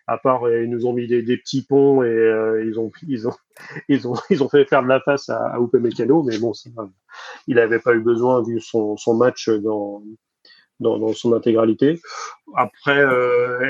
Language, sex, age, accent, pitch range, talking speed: French, male, 30-49, French, 115-130 Hz, 210 wpm